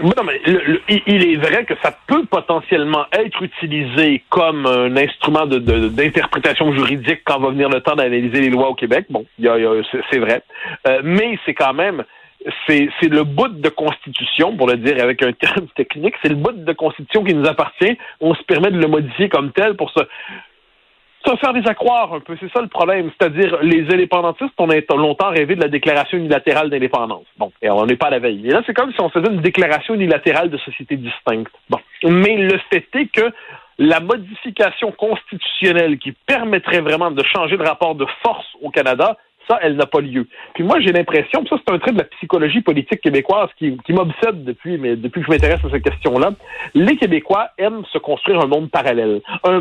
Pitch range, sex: 145-210 Hz, male